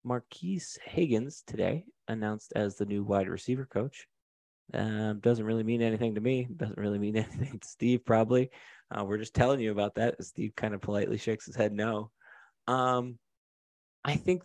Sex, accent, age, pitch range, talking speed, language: male, American, 30-49, 100-125 Hz, 175 wpm, English